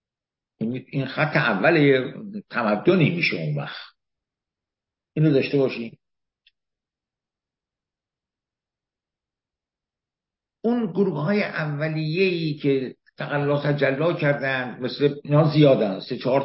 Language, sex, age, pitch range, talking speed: English, male, 60-79, 115-155 Hz, 90 wpm